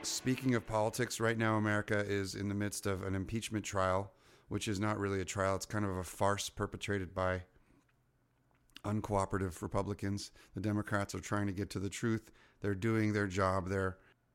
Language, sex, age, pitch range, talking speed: English, male, 30-49, 95-110 Hz, 180 wpm